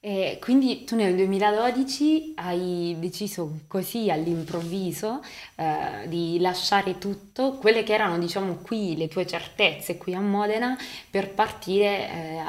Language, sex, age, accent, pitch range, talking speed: Italian, female, 20-39, native, 170-200 Hz, 130 wpm